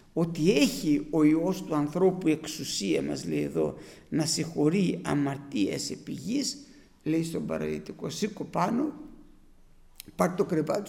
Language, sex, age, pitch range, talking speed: Greek, male, 60-79, 150-200 Hz, 120 wpm